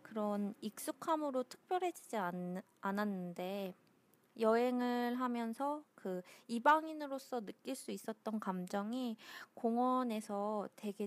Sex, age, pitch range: female, 20-39, 190-250 Hz